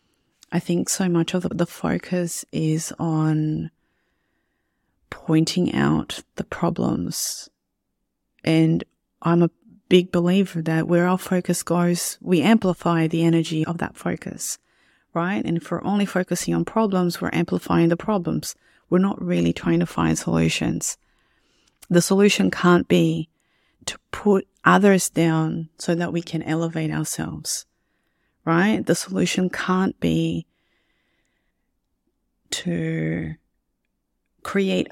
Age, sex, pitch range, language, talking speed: 30-49, female, 160-185 Hz, English, 120 wpm